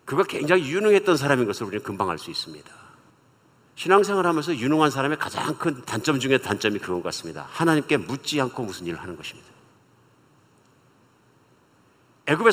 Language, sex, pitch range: Korean, male, 125-170 Hz